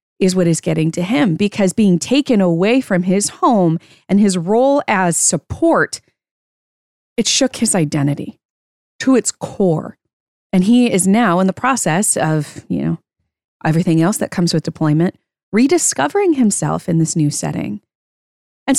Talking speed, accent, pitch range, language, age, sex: 155 wpm, American, 165-230 Hz, English, 20-39, female